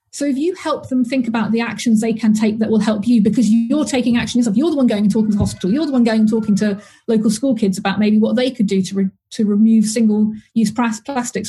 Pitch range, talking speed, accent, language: 210-245 Hz, 270 wpm, British, English